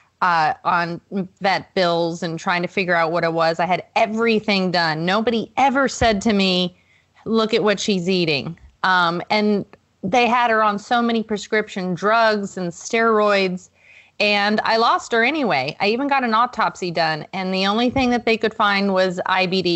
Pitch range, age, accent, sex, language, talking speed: 180-230 Hz, 30-49, American, female, English, 180 wpm